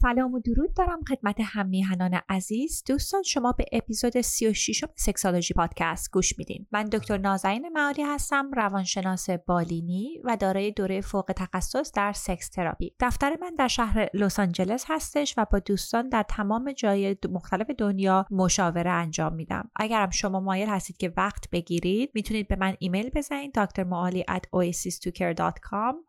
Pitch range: 190-240 Hz